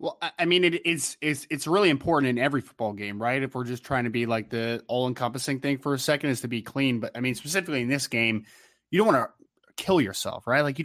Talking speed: 260 wpm